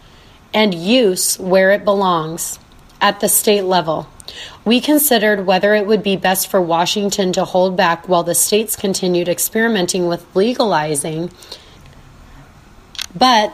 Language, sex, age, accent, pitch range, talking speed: English, female, 30-49, American, 175-215 Hz, 130 wpm